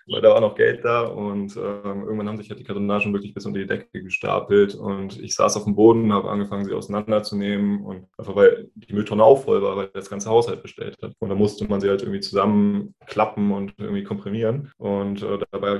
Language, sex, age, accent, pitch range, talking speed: German, male, 20-39, German, 100-115 Hz, 230 wpm